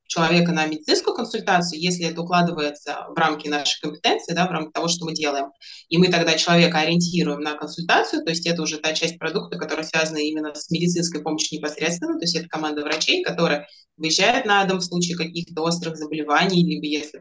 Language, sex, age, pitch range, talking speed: Russian, female, 20-39, 155-175 Hz, 190 wpm